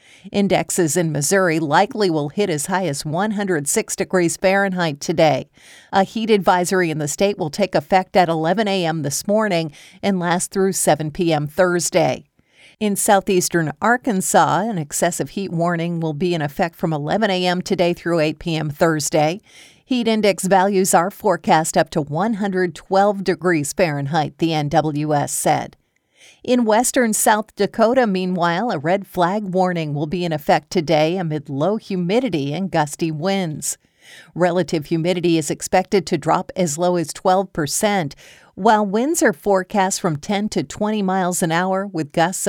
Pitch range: 160-195 Hz